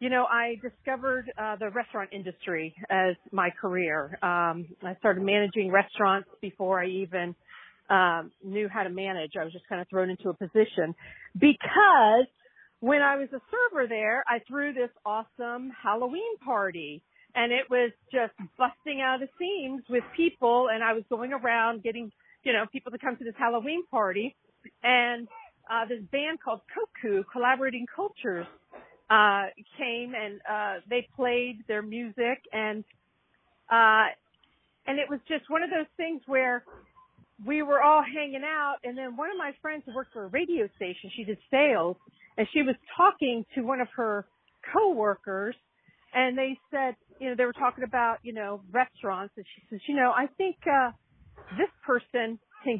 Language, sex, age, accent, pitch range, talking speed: English, female, 50-69, American, 210-275 Hz, 170 wpm